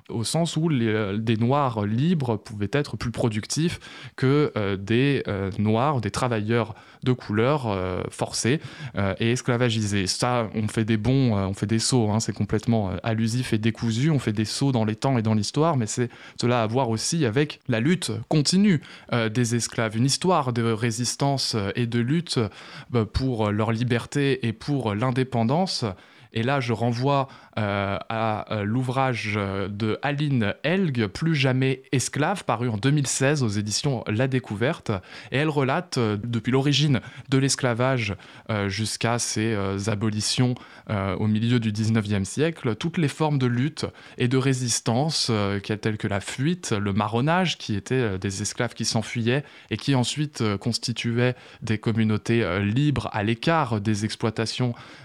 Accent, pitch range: French, 110-135 Hz